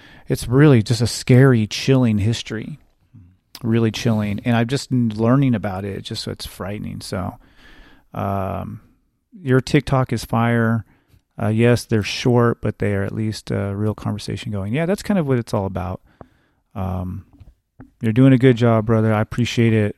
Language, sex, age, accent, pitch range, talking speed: English, male, 30-49, American, 105-120 Hz, 170 wpm